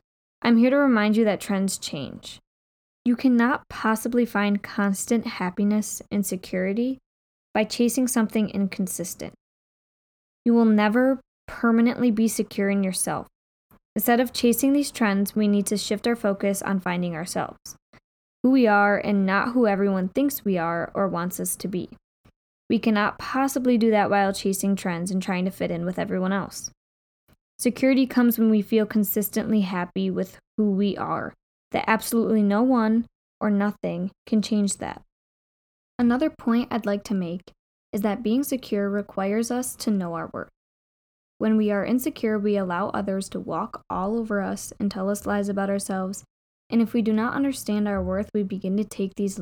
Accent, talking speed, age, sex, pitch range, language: American, 170 wpm, 10-29, female, 195-235 Hz, English